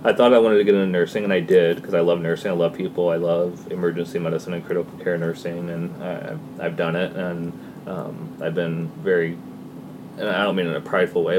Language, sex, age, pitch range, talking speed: English, male, 20-39, 85-95 Hz, 225 wpm